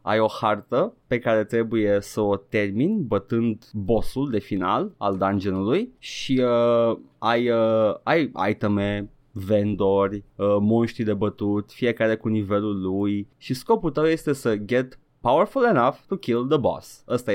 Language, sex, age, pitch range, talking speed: Romanian, male, 20-39, 105-130 Hz, 150 wpm